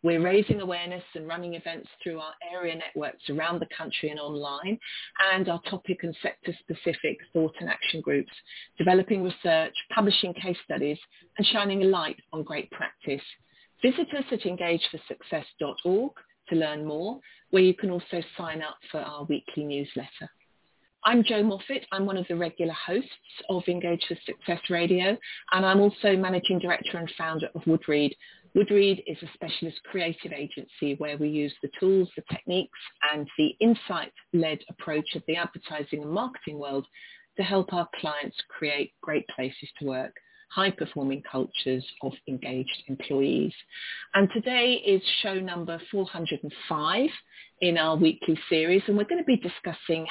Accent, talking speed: British, 155 wpm